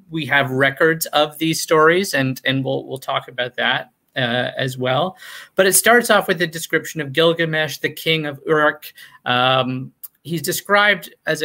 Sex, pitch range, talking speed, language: male, 135-190 Hz, 175 wpm, English